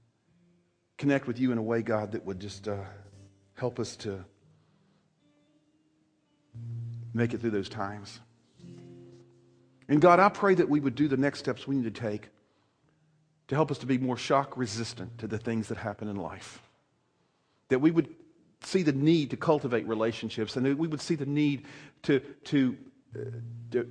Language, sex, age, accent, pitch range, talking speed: English, male, 50-69, American, 115-150 Hz, 175 wpm